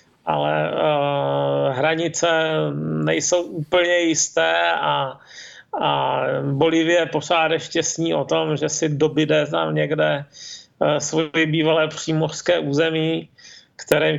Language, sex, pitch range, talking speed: Czech, male, 145-165 Hz, 105 wpm